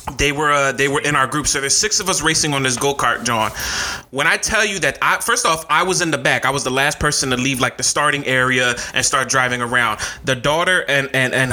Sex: male